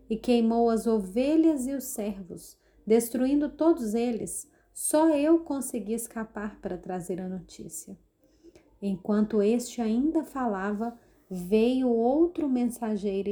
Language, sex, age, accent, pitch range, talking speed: Portuguese, female, 30-49, Brazilian, 205-250 Hz, 115 wpm